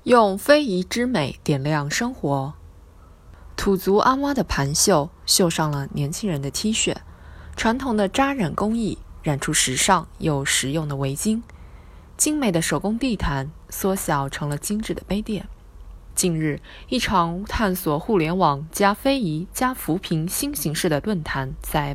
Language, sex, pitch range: Chinese, female, 150-220 Hz